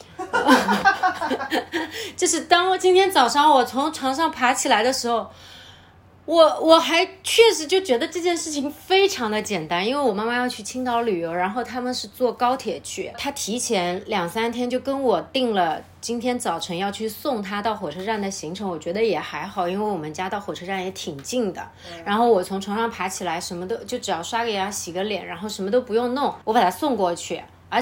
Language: Chinese